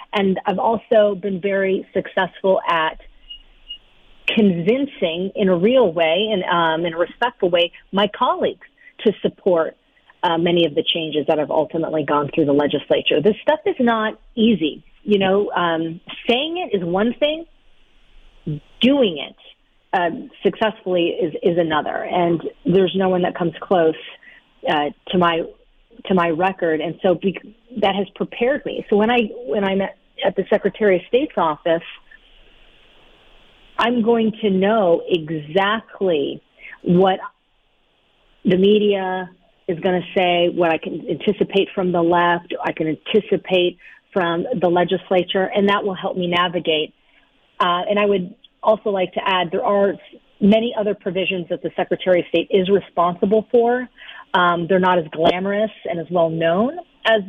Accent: American